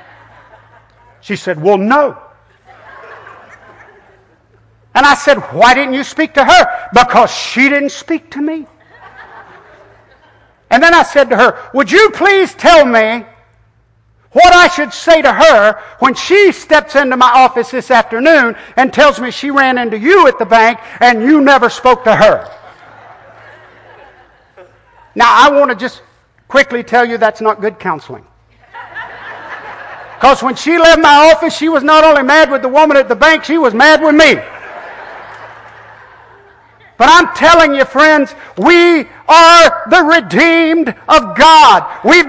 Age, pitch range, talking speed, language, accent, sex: 60-79, 245-330 Hz, 150 wpm, English, American, male